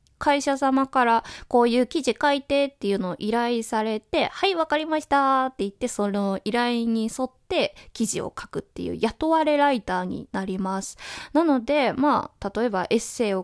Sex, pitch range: female, 210-290 Hz